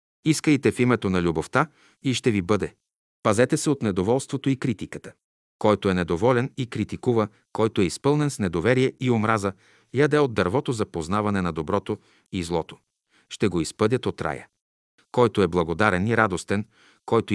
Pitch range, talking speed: 95-125 Hz, 165 wpm